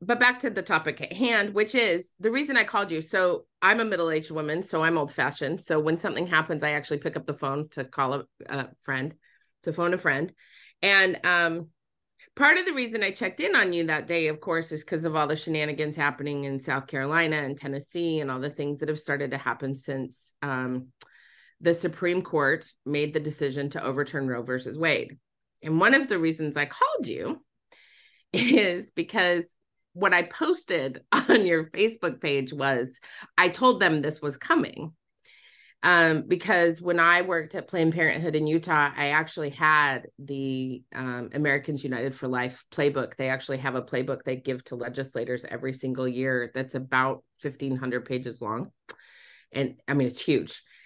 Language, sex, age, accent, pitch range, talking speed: English, female, 30-49, American, 135-170 Hz, 185 wpm